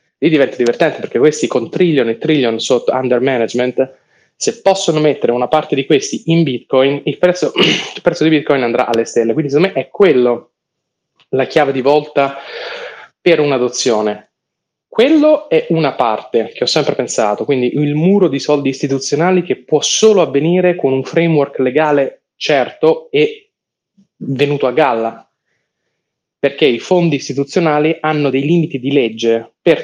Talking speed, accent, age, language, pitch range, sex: 155 wpm, native, 20-39, Italian, 130-160 Hz, male